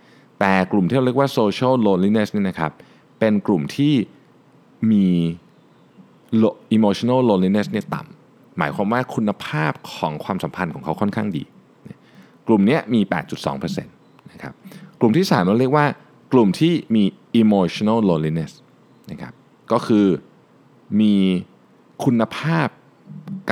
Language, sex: Thai, male